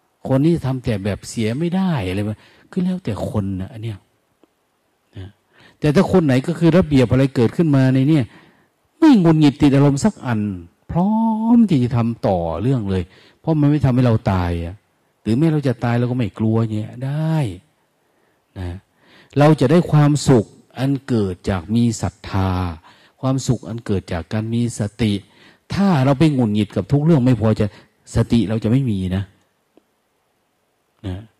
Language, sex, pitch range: Thai, male, 100-140 Hz